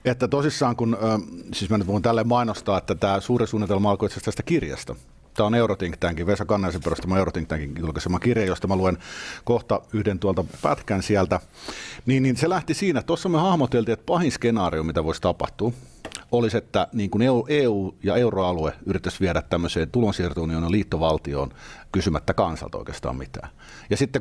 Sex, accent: male, native